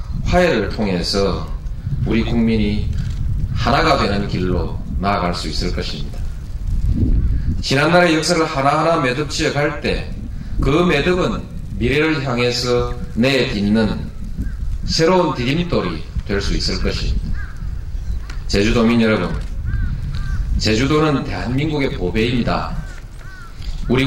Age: 40-59